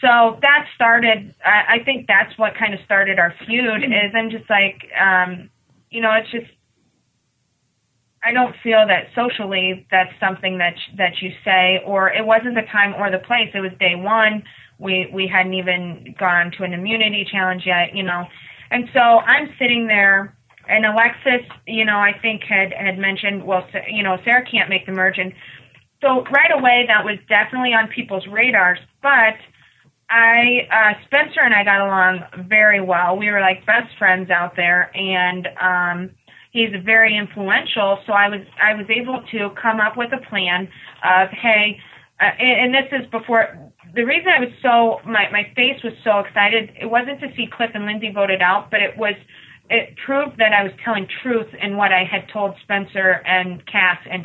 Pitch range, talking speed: 185-230 Hz, 190 wpm